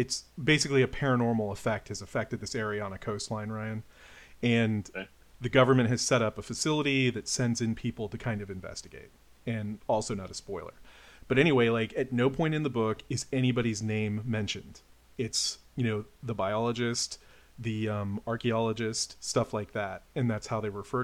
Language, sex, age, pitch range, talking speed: English, male, 40-59, 105-120 Hz, 180 wpm